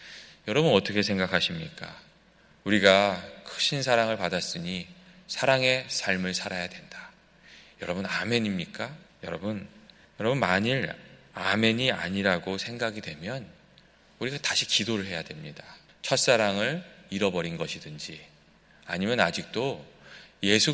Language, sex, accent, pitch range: Korean, male, native, 95-130 Hz